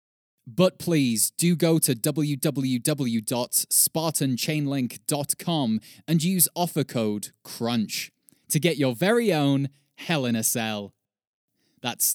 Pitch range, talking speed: 115-185 Hz, 105 wpm